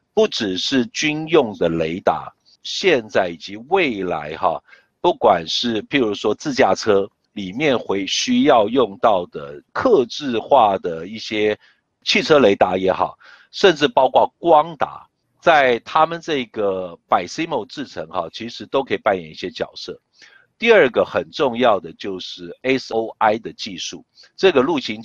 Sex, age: male, 50-69